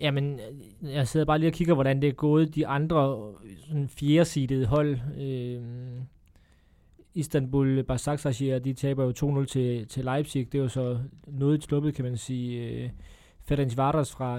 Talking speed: 160 wpm